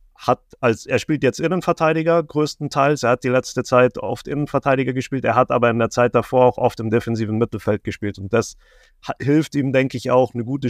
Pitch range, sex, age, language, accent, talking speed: 105-125 Hz, male, 30-49, German, German, 215 wpm